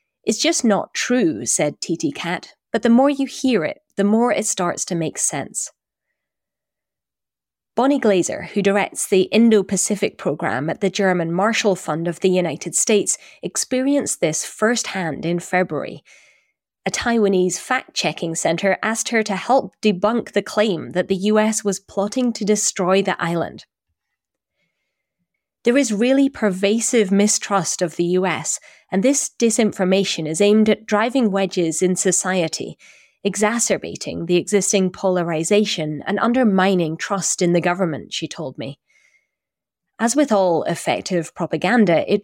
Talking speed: 140 wpm